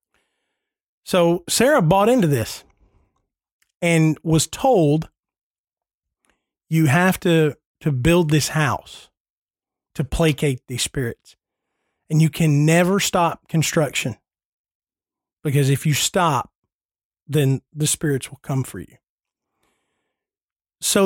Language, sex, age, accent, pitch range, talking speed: English, male, 40-59, American, 145-175 Hz, 105 wpm